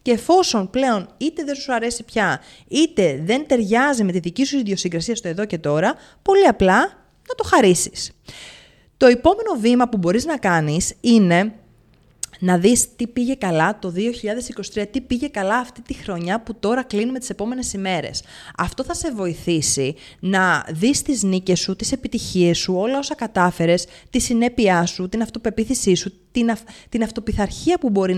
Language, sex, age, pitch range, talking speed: Greek, female, 30-49, 180-245 Hz, 170 wpm